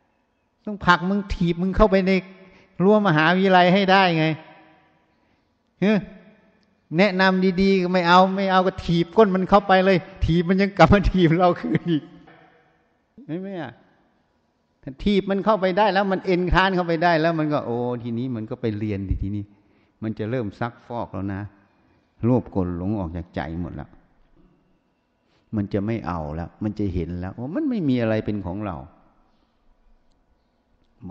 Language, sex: Thai, male